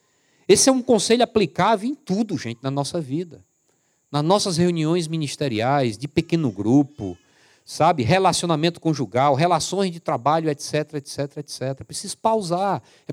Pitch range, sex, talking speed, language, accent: 135-190 Hz, male, 135 wpm, Portuguese, Brazilian